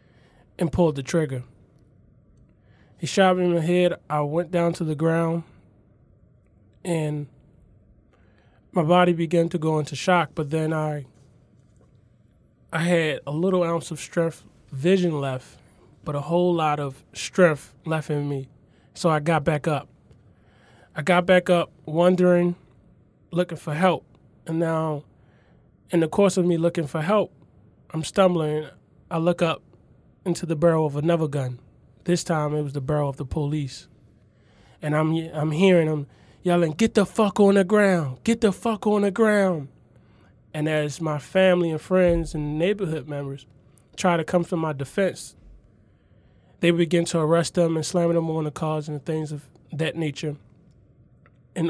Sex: male